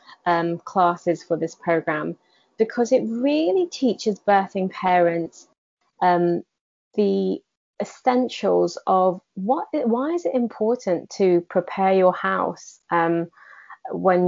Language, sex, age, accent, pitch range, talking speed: English, female, 20-39, British, 170-200 Hz, 105 wpm